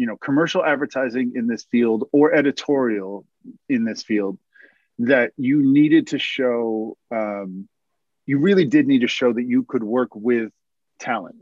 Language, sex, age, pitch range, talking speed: English, male, 30-49, 110-145 Hz, 160 wpm